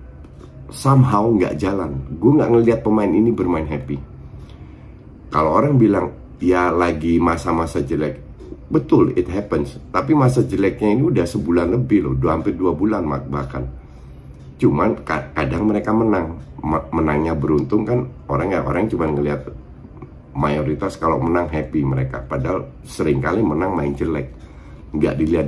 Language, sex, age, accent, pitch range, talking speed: Indonesian, male, 50-69, native, 70-105 Hz, 135 wpm